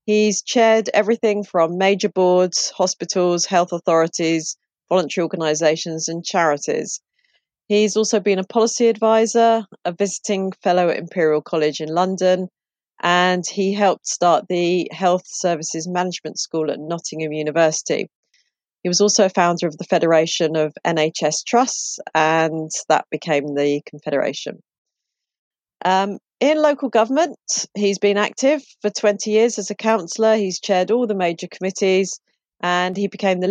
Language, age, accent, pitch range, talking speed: English, 40-59, British, 165-210 Hz, 140 wpm